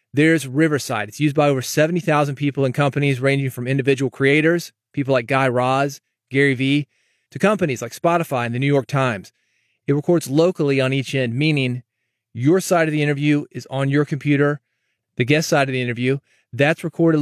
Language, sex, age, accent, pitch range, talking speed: English, male, 30-49, American, 125-155 Hz, 185 wpm